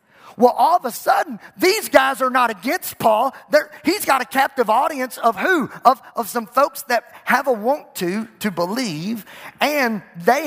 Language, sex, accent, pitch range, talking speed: English, male, American, 155-245 Hz, 185 wpm